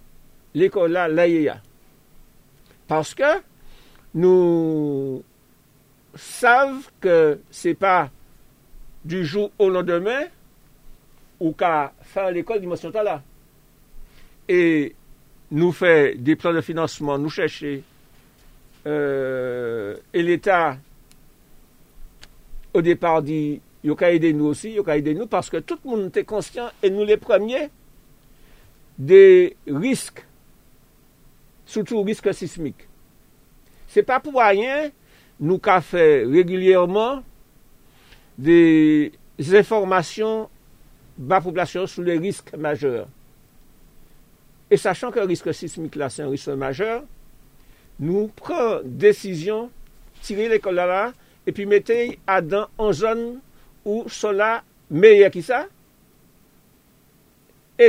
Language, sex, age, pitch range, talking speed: French, male, 60-79, 160-225 Hz, 110 wpm